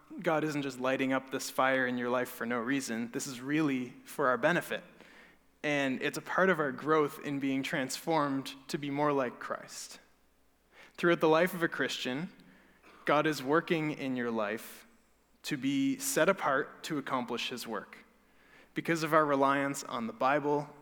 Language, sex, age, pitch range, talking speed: English, male, 20-39, 130-155 Hz, 175 wpm